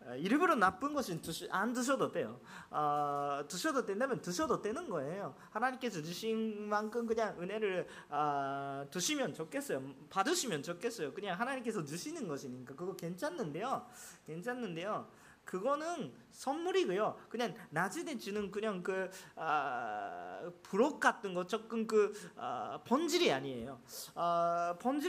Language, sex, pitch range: Japanese, male, 185-300 Hz